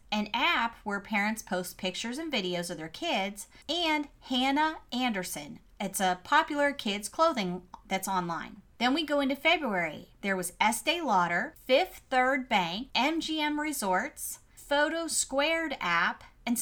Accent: American